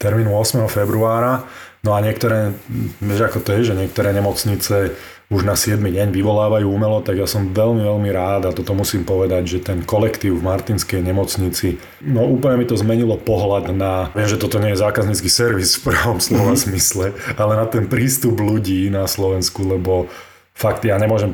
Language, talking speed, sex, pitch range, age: Slovak, 180 wpm, male, 95-110 Hz, 30-49